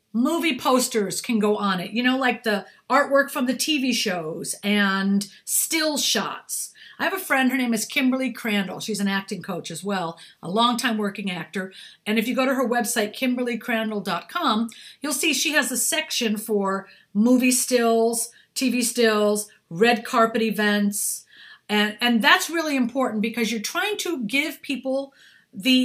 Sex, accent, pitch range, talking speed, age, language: female, American, 210-265 Hz, 165 wpm, 50-69, English